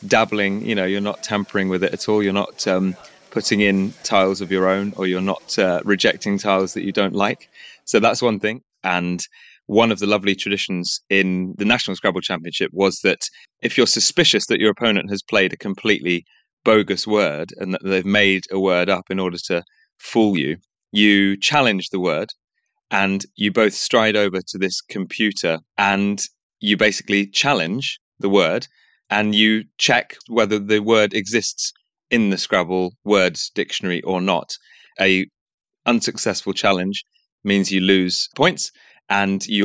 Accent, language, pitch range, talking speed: British, English, 90-105 Hz, 170 wpm